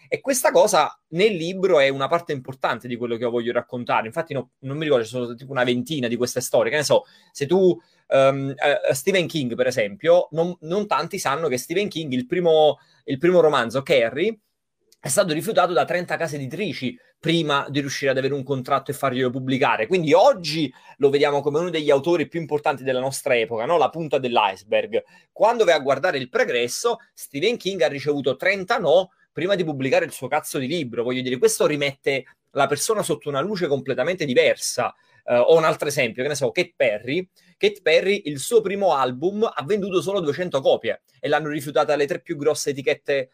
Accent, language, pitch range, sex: native, Italian, 135-195 Hz, male